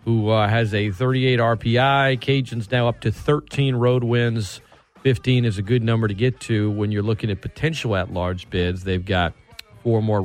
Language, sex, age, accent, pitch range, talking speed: English, male, 40-59, American, 105-130 Hz, 195 wpm